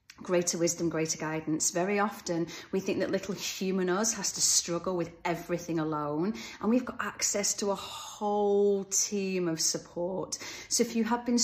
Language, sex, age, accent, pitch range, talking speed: English, female, 30-49, British, 170-205 Hz, 175 wpm